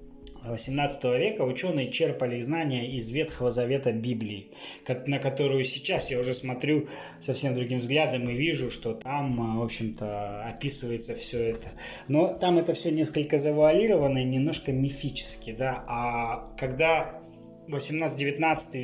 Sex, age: male, 20-39